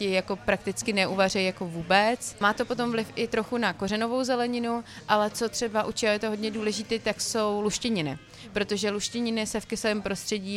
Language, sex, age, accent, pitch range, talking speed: Czech, female, 30-49, native, 195-220 Hz, 180 wpm